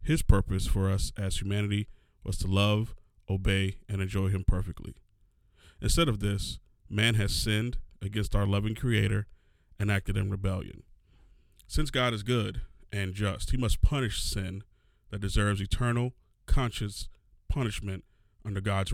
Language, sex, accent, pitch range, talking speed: English, male, American, 95-115 Hz, 145 wpm